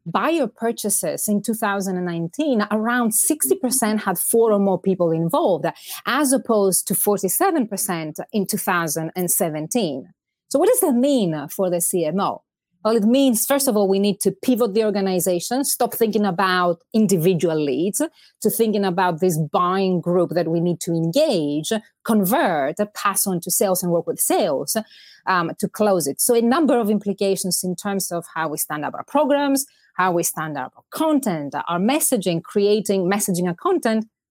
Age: 30-49